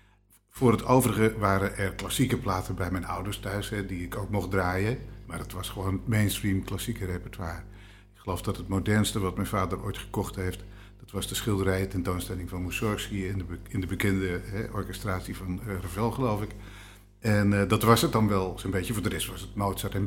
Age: 50-69